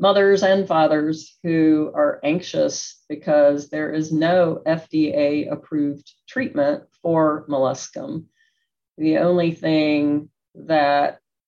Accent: American